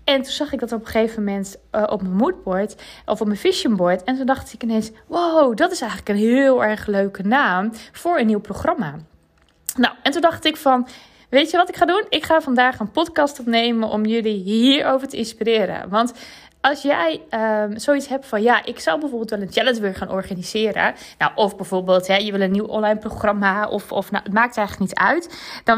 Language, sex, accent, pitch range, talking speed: Dutch, female, Dutch, 210-285 Hz, 220 wpm